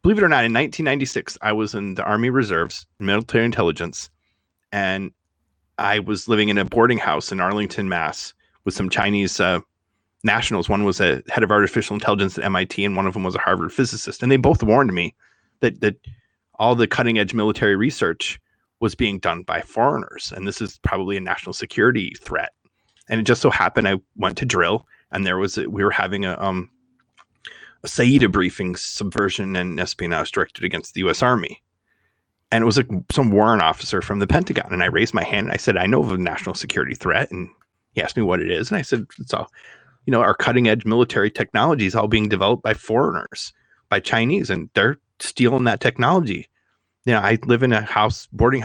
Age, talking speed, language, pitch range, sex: 30-49, 205 wpm, English, 95-120 Hz, male